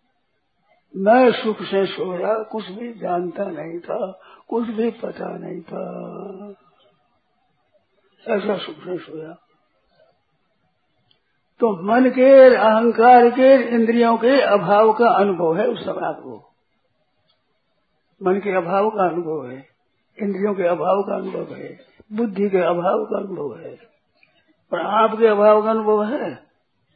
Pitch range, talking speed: 195-230 Hz, 125 wpm